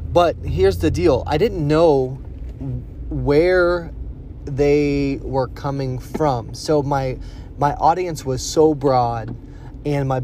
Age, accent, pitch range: 20-39, American, 130-150 Hz